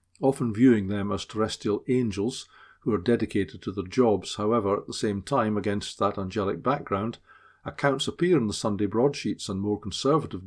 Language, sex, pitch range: English, male, 100-120 Hz